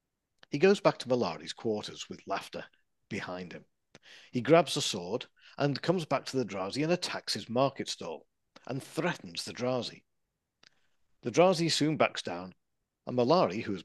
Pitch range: 110-145 Hz